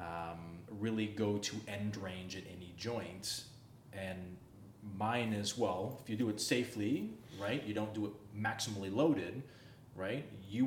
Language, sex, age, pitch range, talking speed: English, male, 20-39, 100-120 Hz, 150 wpm